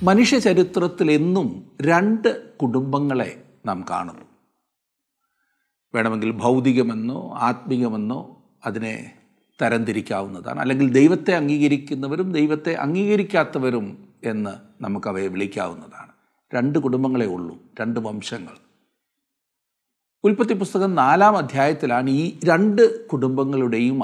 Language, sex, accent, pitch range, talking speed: Malayalam, male, native, 130-210 Hz, 75 wpm